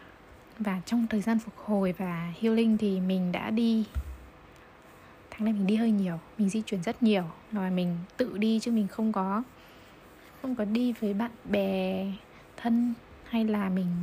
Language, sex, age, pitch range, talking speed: Vietnamese, female, 20-39, 190-220 Hz, 175 wpm